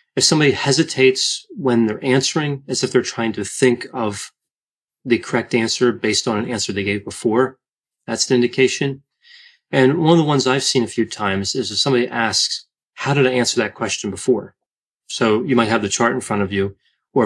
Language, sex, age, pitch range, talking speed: English, male, 30-49, 110-135 Hz, 200 wpm